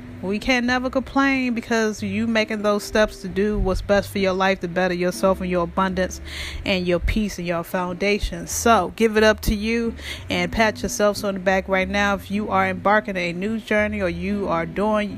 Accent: American